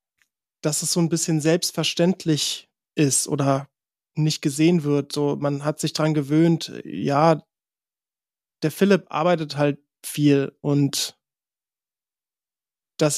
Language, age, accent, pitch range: German, 20-39, German, 145-170 Hz